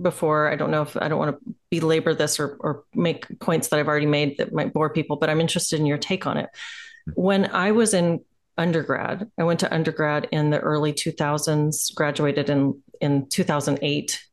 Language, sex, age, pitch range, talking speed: English, female, 30-49, 155-200 Hz, 200 wpm